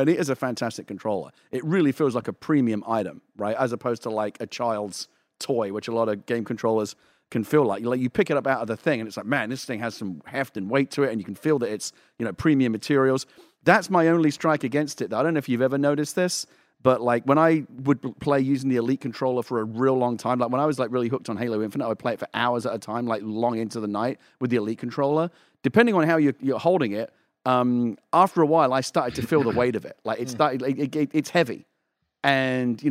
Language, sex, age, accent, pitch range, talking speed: English, male, 40-59, British, 120-145 Hz, 265 wpm